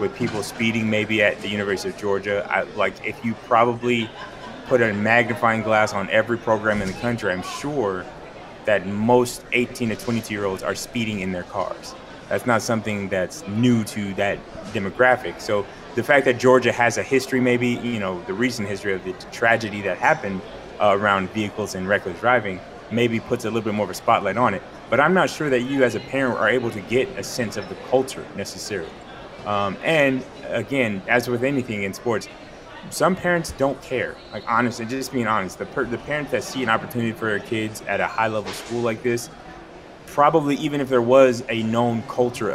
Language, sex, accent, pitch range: English, male, American, 105-125 Hz